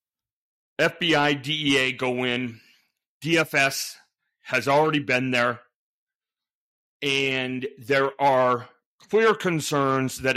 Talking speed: 85 wpm